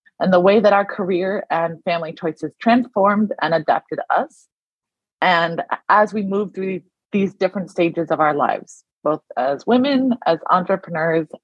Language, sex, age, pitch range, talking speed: English, female, 20-39, 175-240 Hz, 150 wpm